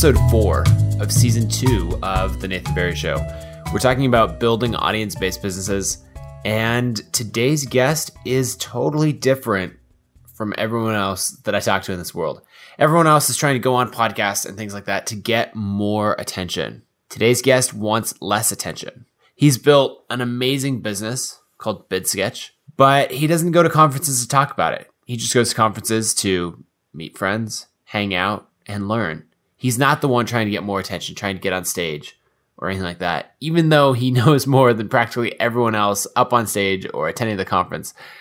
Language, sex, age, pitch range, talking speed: English, male, 20-39, 100-125 Hz, 180 wpm